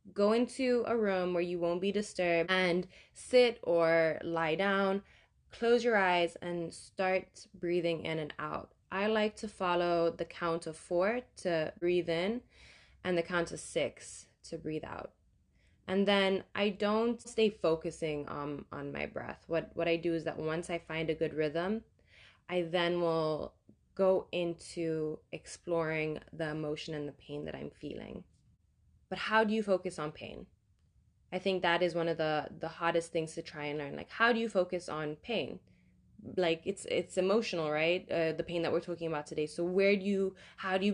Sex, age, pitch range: female, 20-39, 160-190 Hz